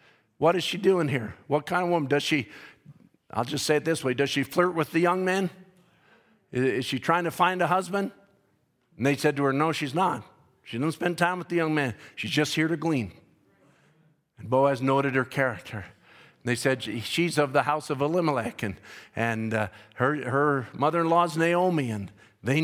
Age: 50-69